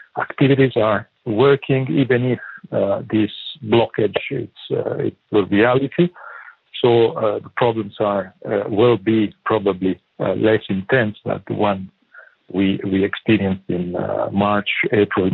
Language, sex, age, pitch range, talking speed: English, male, 50-69, 105-135 Hz, 135 wpm